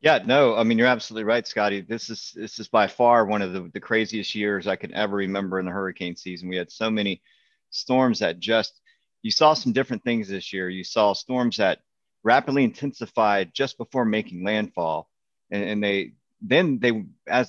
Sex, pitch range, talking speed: male, 95-115 Hz, 200 wpm